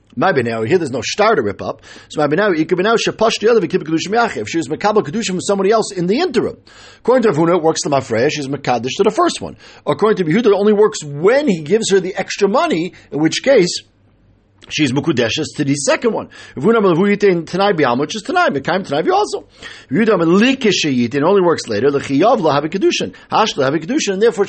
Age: 50-69